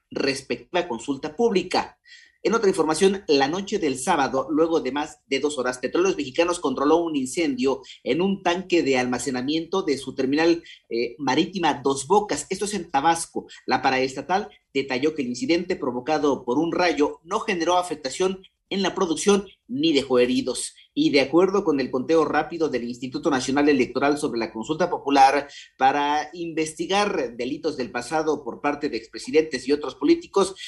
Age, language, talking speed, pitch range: 40-59, Spanish, 165 wpm, 135-185 Hz